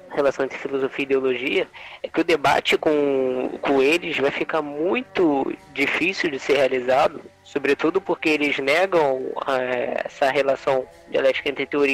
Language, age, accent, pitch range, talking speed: Portuguese, 10-29, Brazilian, 135-175 Hz, 145 wpm